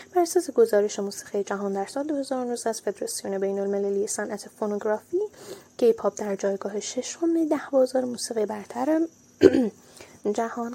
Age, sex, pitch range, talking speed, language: 10-29, female, 210-325 Hz, 125 wpm, Persian